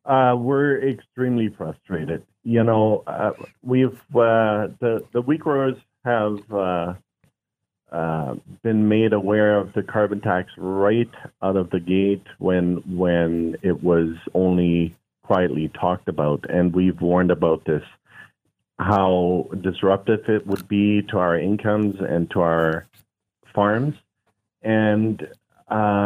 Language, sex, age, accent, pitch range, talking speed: English, male, 40-59, American, 90-110 Hz, 125 wpm